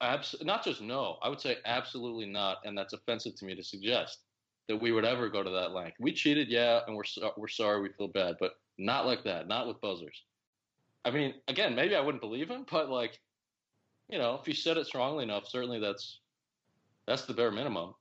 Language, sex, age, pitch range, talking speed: English, male, 20-39, 100-125 Hz, 220 wpm